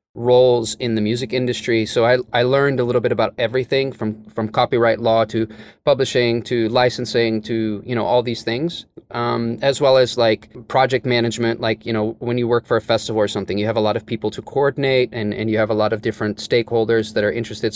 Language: English